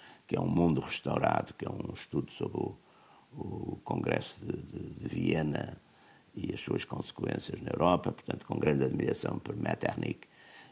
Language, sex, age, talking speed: Portuguese, male, 60-79, 160 wpm